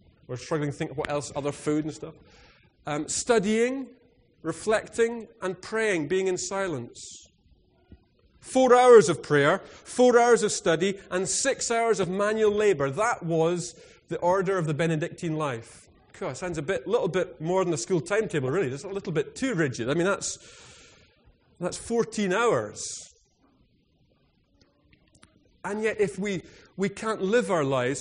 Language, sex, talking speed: English, male, 160 wpm